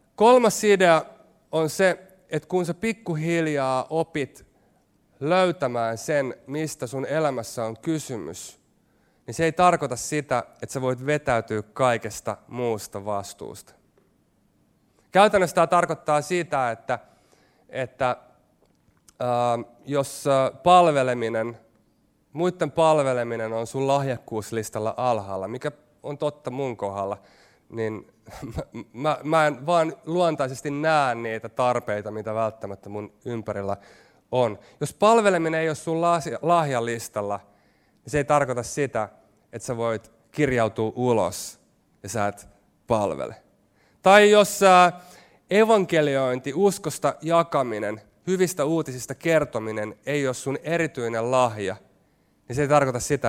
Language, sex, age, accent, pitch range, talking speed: Finnish, male, 30-49, native, 115-160 Hz, 115 wpm